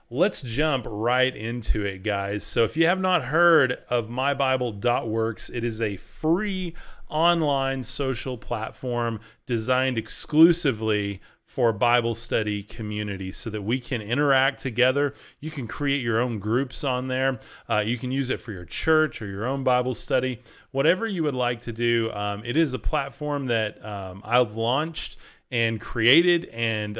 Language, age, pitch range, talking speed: English, 30-49, 110-140 Hz, 160 wpm